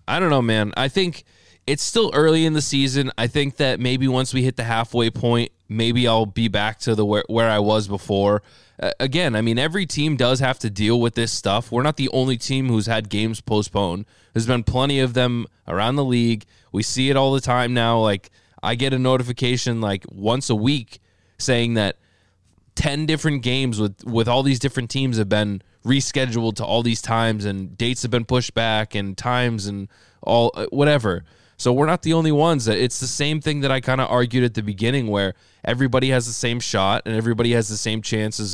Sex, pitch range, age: male, 105-130 Hz, 20-39